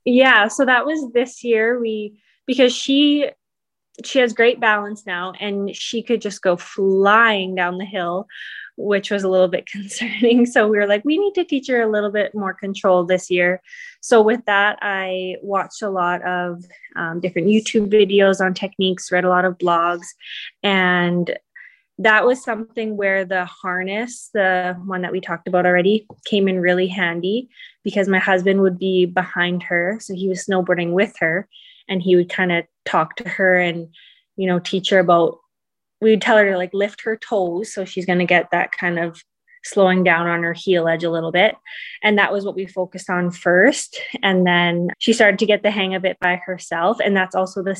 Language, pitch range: English, 180-215 Hz